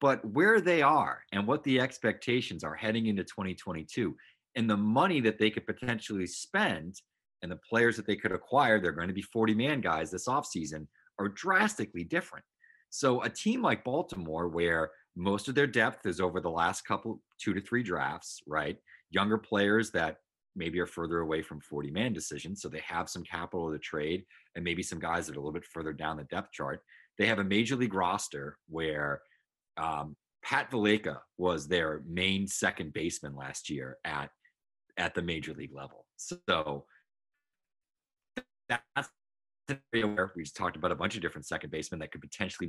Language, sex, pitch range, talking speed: English, male, 85-115 Hz, 185 wpm